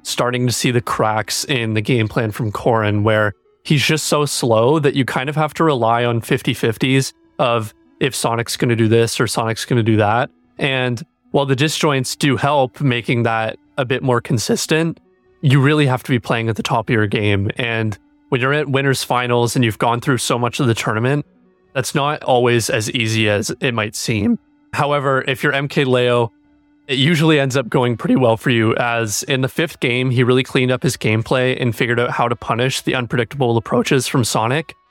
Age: 30-49